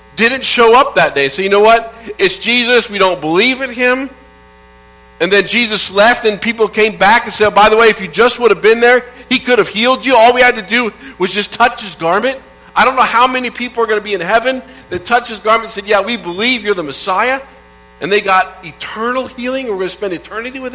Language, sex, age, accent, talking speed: English, male, 50-69, American, 250 wpm